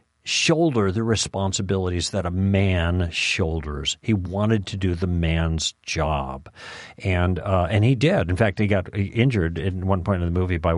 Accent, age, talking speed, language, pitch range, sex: American, 50-69, 175 wpm, English, 90-110 Hz, male